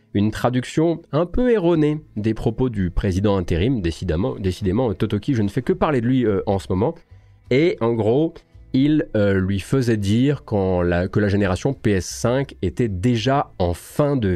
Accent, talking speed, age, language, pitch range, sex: French, 180 wpm, 30-49, French, 90-120 Hz, male